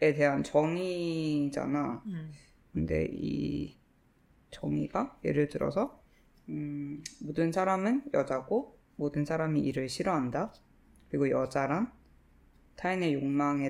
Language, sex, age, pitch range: Korean, female, 20-39, 145-185 Hz